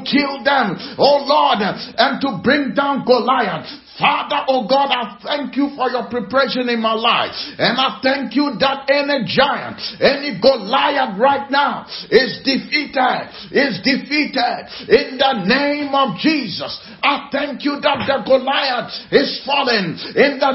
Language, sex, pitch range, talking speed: English, male, 220-275 Hz, 150 wpm